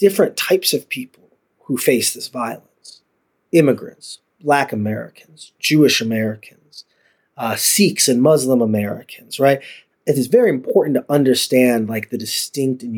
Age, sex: 30-49, male